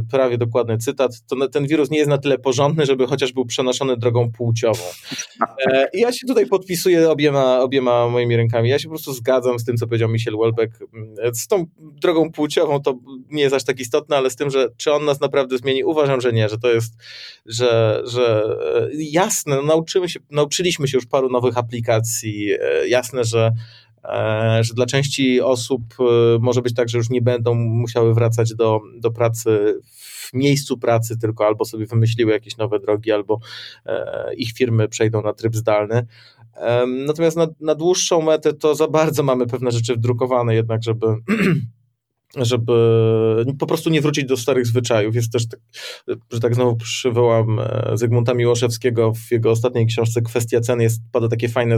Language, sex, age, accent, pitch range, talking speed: Polish, male, 20-39, native, 115-140 Hz, 170 wpm